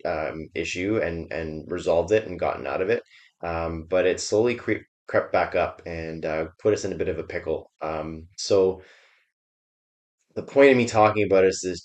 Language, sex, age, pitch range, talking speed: English, male, 20-39, 85-100 Hz, 195 wpm